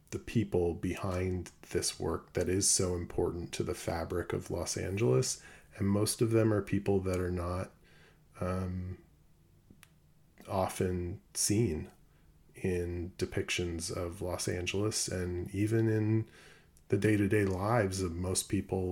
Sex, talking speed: male, 125 wpm